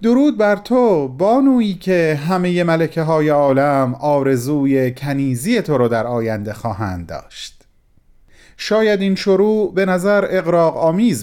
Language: Persian